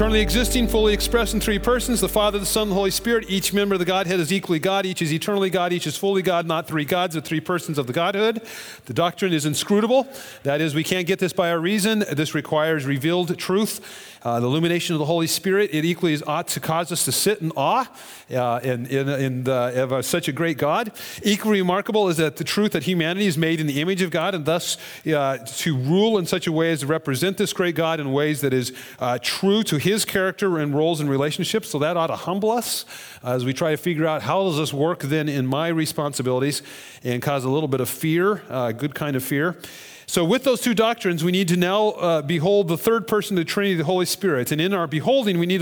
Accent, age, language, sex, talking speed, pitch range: American, 40-59, English, male, 240 wpm, 145-195 Hz